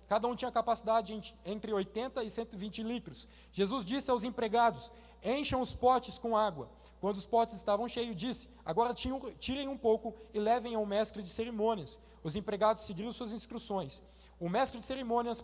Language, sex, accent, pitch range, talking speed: Portuguese, male, Brazilian, 205-245 Hz, 165 wpm